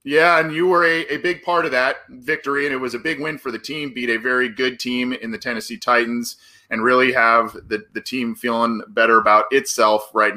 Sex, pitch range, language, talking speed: male, 110-155 Hz, English, 230 wpm